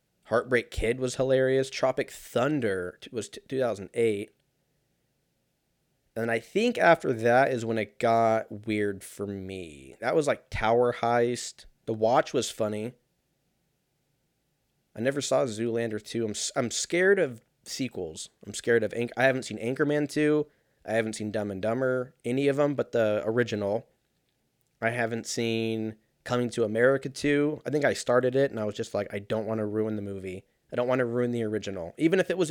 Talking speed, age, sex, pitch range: 185 wpm, 20-39, male, 110-140 Hz